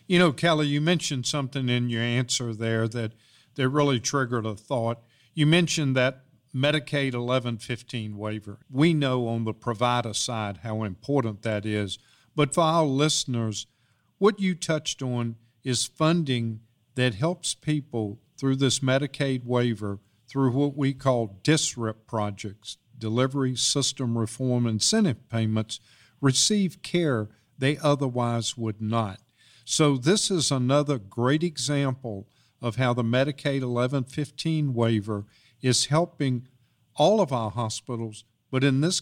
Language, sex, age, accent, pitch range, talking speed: English, male, 50-69, American, 115-145 Hz, 135 wpm